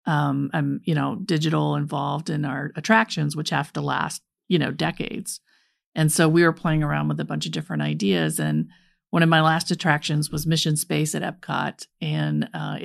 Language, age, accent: English, 40-59, American